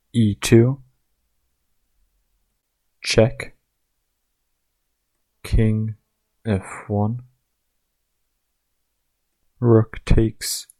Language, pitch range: English, 95-115 Hz